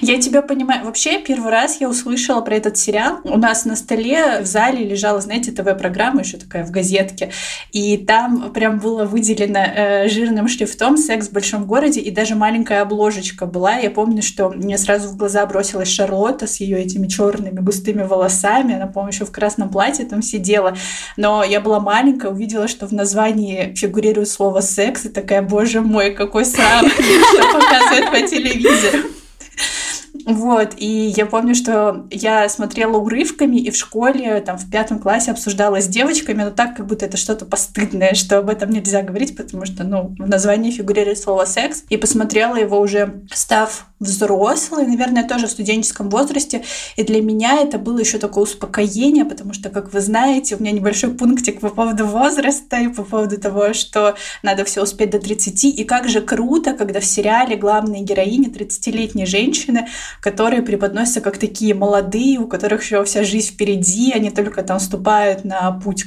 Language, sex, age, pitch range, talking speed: Russian, female, 20-39, 200-230 Hz, 175 wpm